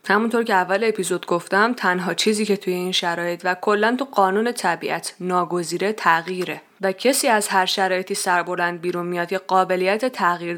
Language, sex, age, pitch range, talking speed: Persian, female, 20-39, 175-220 Hz, 165 wpm